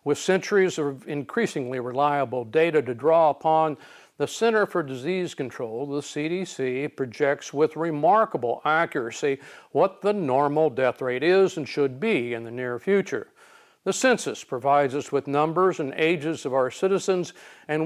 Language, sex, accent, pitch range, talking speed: English, male, American, 135-175 Hz, 150 wpm